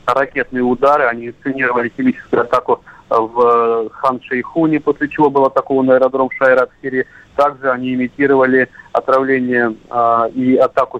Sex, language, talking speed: male, Russian, 110 wpm